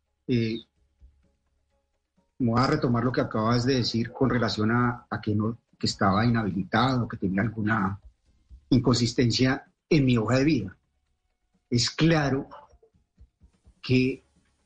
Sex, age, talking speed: male, 40-59, 125 wpm